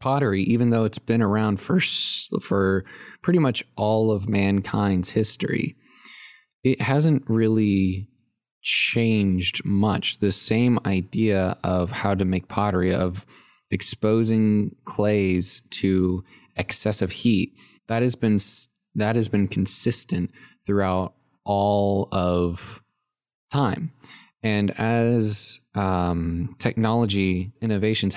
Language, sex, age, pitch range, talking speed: English, male, 20-39, 95-115 Hz, 105 wpm